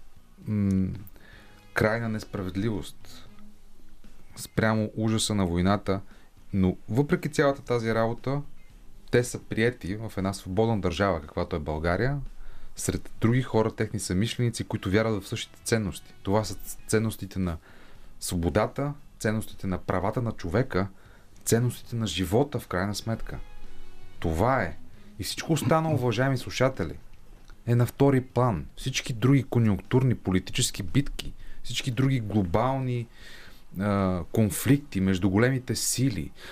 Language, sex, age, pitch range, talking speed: Bulgarian, male, 30-49, 95-125 Hz, 115 wpm